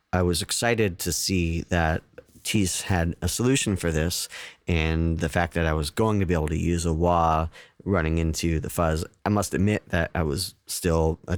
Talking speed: 200 wpm